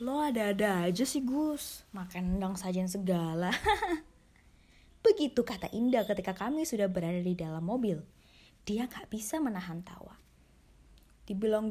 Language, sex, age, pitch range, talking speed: Indonesian, female, 20-39, 180-260 Hz, 130 wpm